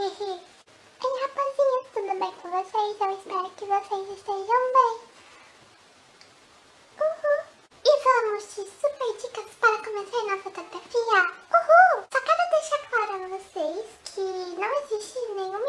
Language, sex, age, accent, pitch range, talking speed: Portuguese, male, 10-29, Brazilian, 335-425 Hz, 130 wpm